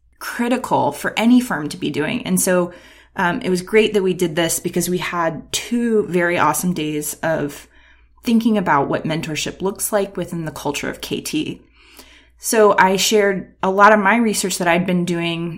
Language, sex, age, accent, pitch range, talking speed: English, female, 20-39, American, 165-205 Hz, 185 wpm